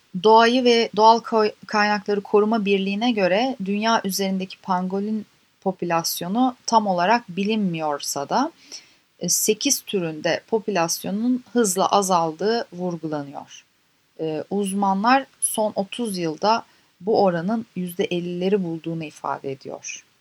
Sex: female